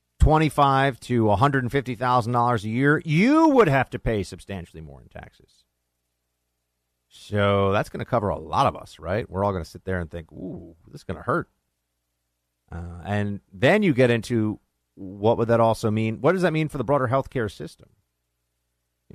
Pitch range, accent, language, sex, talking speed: 85-135 Hz, American, English, male, 185 wpm